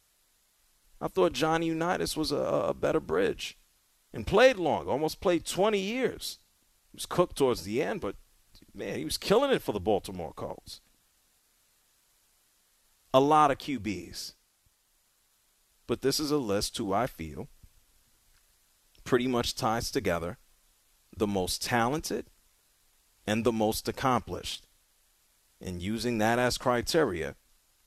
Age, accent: 40-59, American